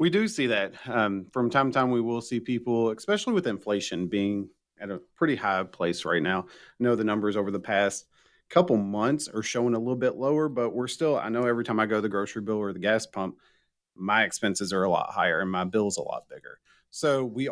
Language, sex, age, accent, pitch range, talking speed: English, male, 40-59, American, 105-130 Hz, 240 wpm